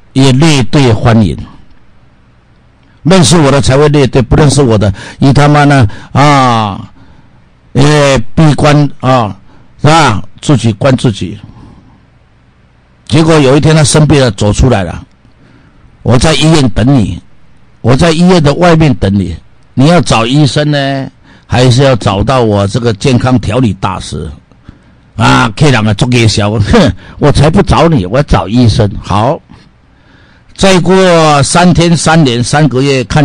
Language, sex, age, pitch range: Chinese, male, 60-79, 110-150 Hz